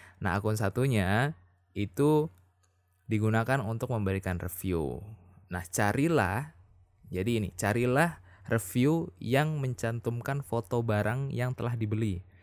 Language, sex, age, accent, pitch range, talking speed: Indonesian, male, 20-39, native, 95-120 Hz, 100 wpm